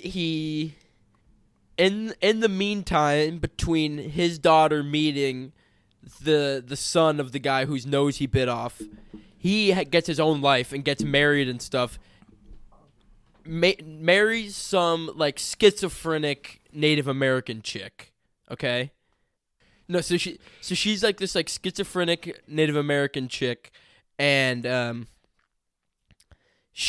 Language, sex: English, male